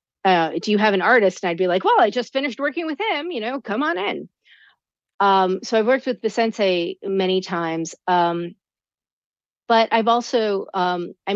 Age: 40-59